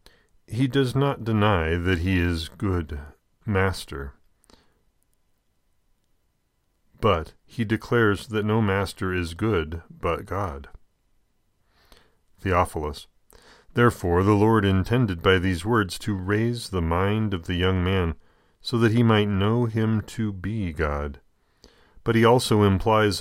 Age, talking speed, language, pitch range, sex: 40-59, 125 wpm, English, 85-110 Hz, male